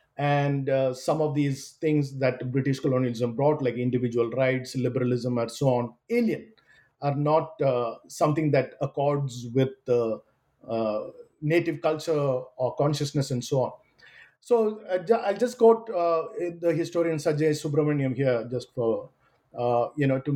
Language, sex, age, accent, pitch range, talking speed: English, male, 50-69, Indian, 135-175 Hz, 155 wpm